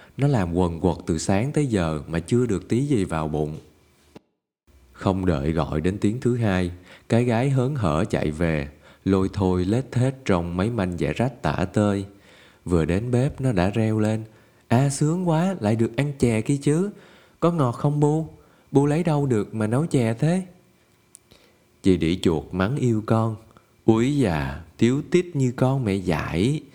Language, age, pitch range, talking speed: Vietnamese, 20-39, 90-130 Hz, 185 wpm